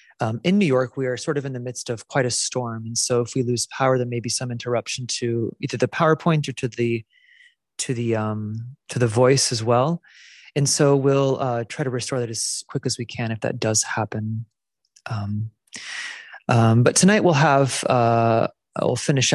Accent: American